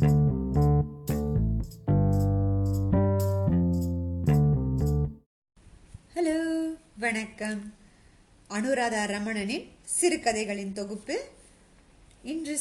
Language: Tamil